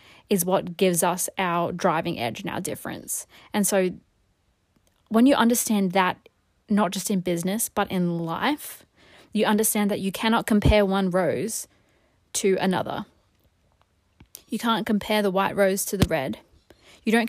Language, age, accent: English, 20-39, Australian